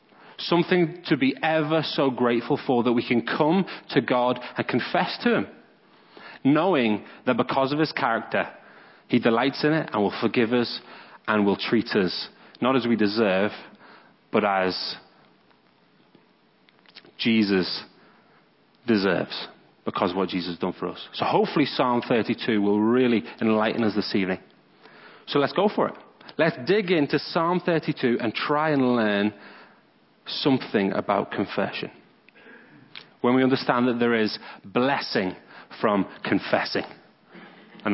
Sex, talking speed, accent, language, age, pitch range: male, 140 wpm, British, English, 30-49, 110-155 Hz